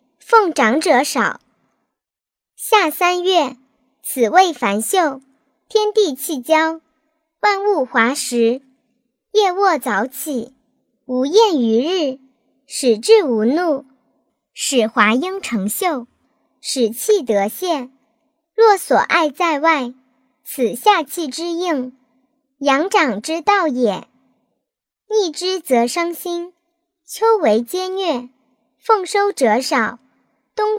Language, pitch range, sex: Chinese, 250-360 Hz, male